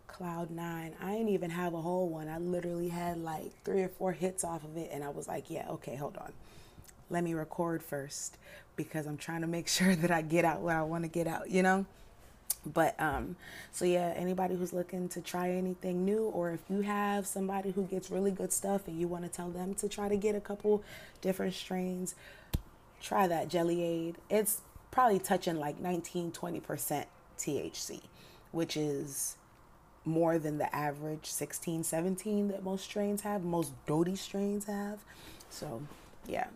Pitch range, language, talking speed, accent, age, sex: 165-190 Hz, English, 190 wpm, American, 30-49, female